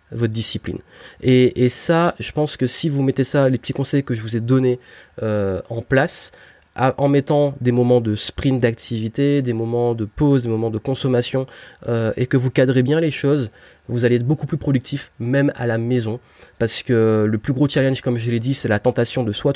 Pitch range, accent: 115-135 Hz, French